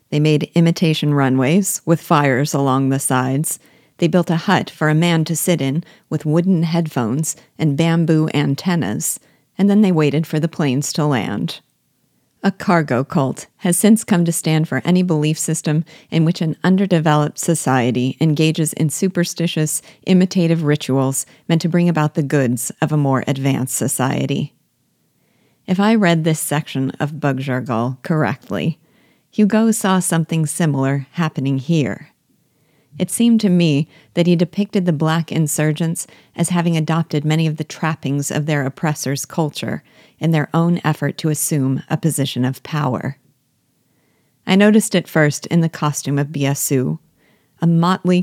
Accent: American